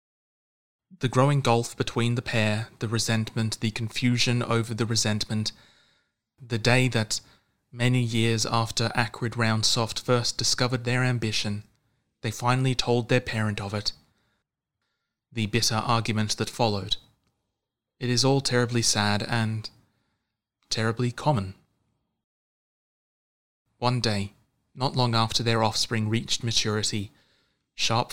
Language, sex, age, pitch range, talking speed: English, male, 20-39, 110-120 Hz, 115 wpm